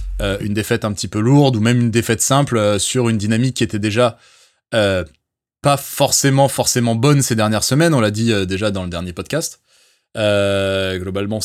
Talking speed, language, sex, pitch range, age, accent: 200 wpm, French, male, 100-125 Hz, 20-39, French